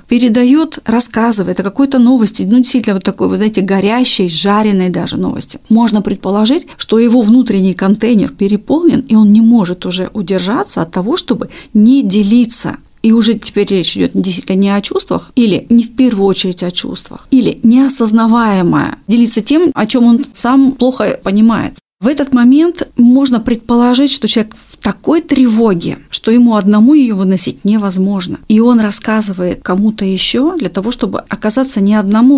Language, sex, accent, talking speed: Russian, female, native, 160 wpm